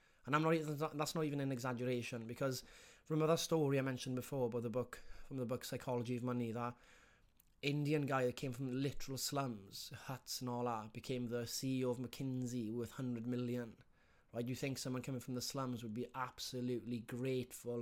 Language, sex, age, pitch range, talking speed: English, male, 20-39, 120-135 Hz, 195 wpm